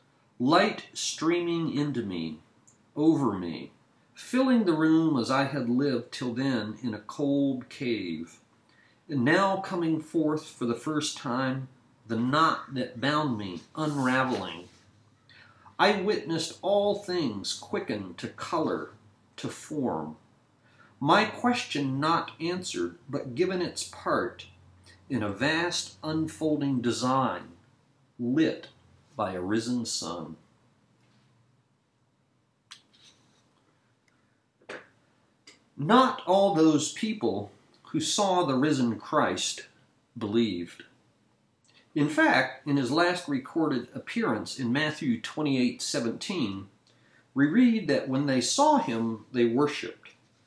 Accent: American